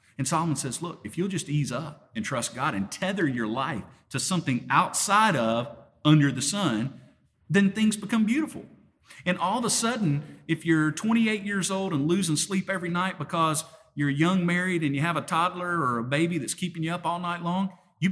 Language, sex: English, male